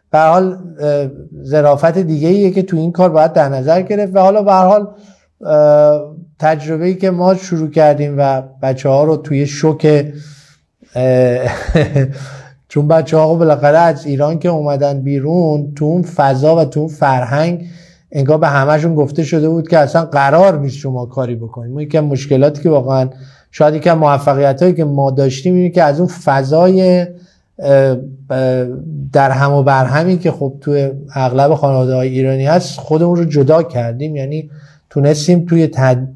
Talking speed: 150 wpm